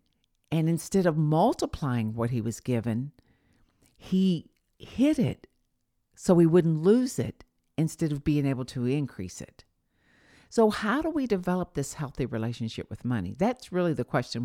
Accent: American